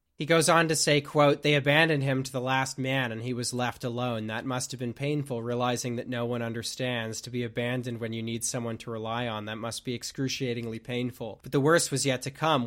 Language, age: English, 30-49